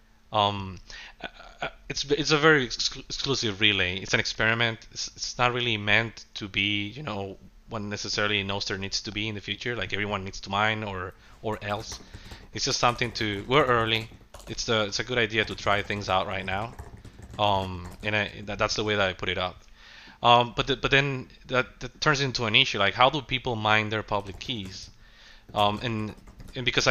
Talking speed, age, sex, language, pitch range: 200 wpm, 30-49, male, English, 100-120 Hz